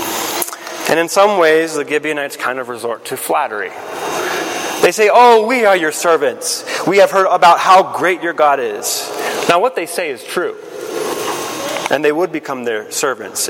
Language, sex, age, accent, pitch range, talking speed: English, male, 30-49, American, 125-205 Hz, 175 wpm